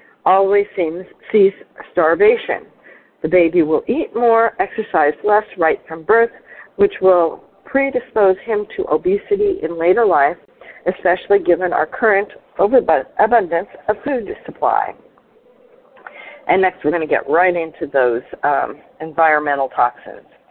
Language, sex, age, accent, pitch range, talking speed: English, female, 50-69, American, 180-260 Hz, 125 wpm